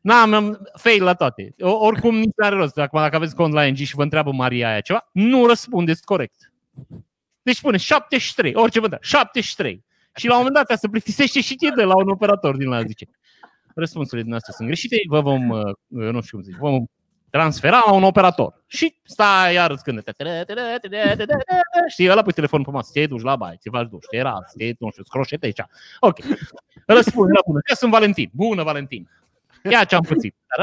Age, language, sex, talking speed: 30-49, Romanian, male, 190 wpm